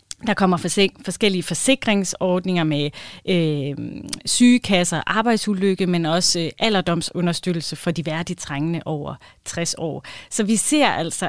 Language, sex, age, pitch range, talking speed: Danish, female, 30-49, 165-215 Hz, 120 wpm